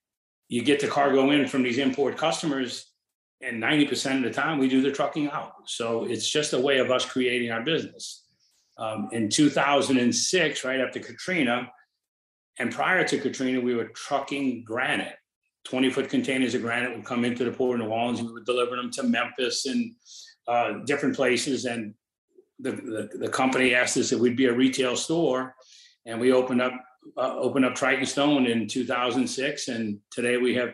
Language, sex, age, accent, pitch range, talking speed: English, male, 40-59, American, 120-140 Hz, 185 wpm